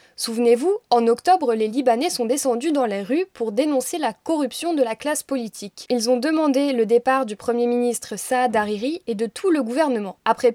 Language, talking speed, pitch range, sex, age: French, 195 wpm, 225-285 Hz, female, 20-39